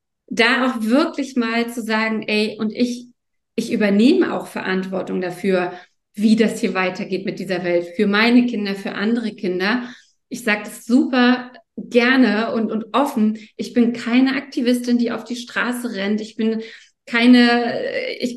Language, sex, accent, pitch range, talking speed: German, female, German, 215-250 Hz, 155 wpm